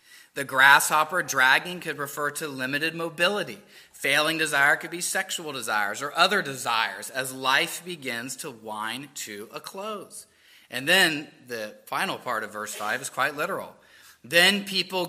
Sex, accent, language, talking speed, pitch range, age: male, American, English, 150 wpm, 155-220 Hz, 30-49